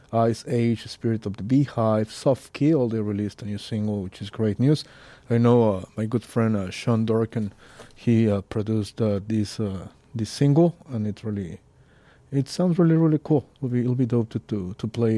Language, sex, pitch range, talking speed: English, male, 105-125 Hz, 195 wpm